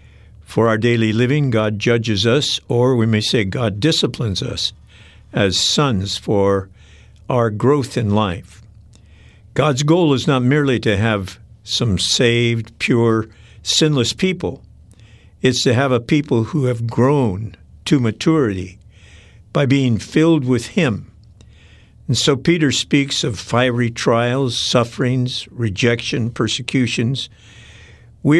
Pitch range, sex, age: 105-135 Hz, male, 60-79